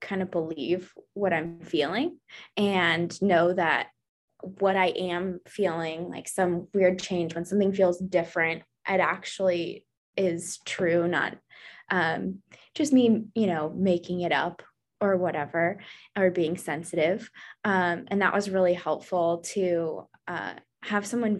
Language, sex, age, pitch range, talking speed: English, female, 20-39, 170-195 Hz, 135 wpm